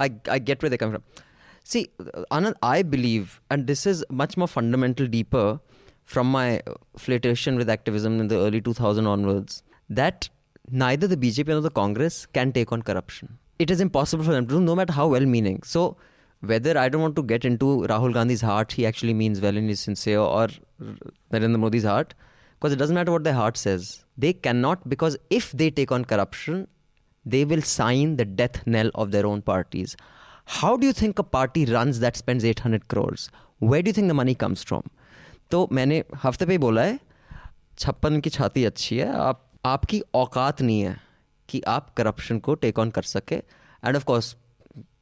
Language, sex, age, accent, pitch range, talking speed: English, male, 20-39, Indian, 110-145 Hz, 185 wpm